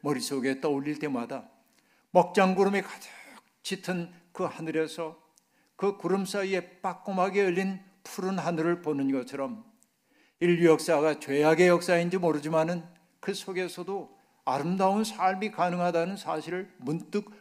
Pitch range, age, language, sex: 155-190 Hz, 60-79, Korean, male